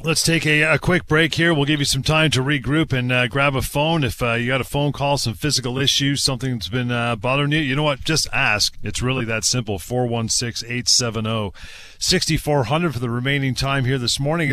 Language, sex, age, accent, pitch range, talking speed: English, male, 40-59, American, 105-135 Hz, 215 wpm